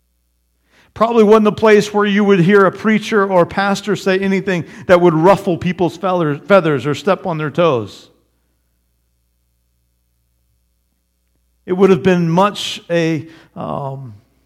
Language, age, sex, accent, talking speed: English, 50-69, male, American, 135 wpm